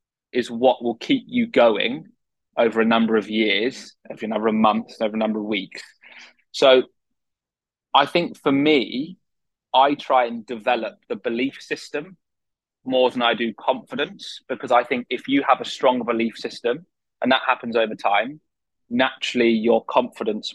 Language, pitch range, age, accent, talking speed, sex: English, 115-130 Hz, 20-39, British, 165 wpm, male